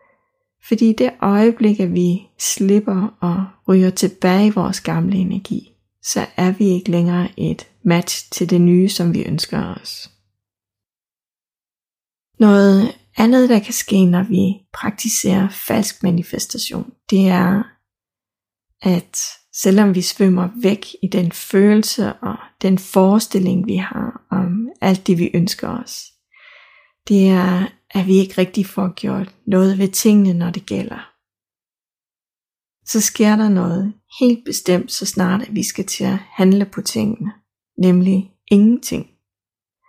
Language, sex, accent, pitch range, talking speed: Danish, female, native, 185-220 Hz, 135 wpm